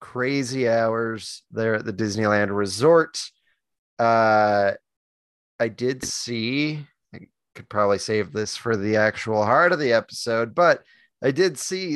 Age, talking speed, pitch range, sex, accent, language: 20-39, 135 wpm, 105-125 Hz, male, American, English